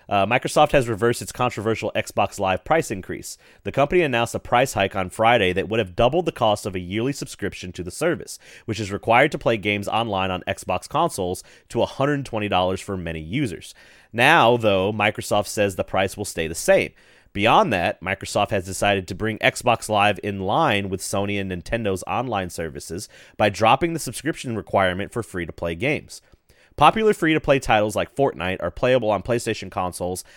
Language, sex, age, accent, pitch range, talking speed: English, male, 30-49, American, 95-120 Hz, 180 wpm